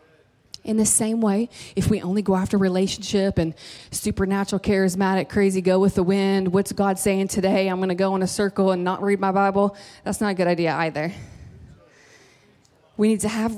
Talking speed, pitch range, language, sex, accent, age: 195 wpm, 175-210 Hz, English, female, American, 20-39